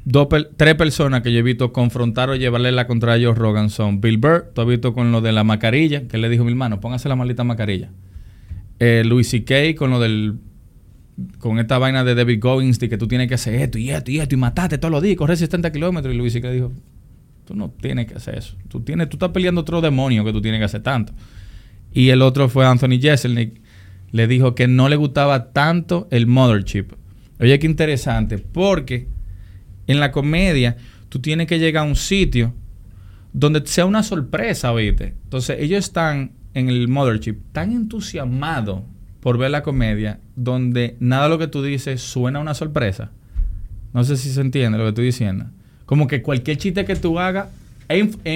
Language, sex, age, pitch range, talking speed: Spanish, male, 20-39, 110-145 Hz, 205 wpm